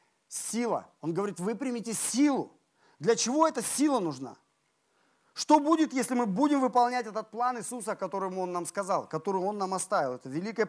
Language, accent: Russian, native